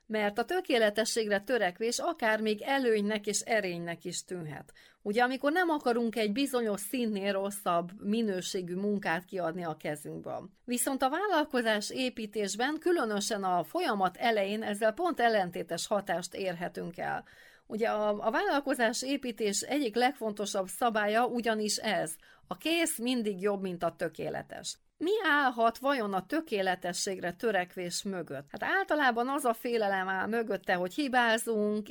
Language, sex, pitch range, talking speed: Hungarian, female, 190-245 Hz, 130 wpm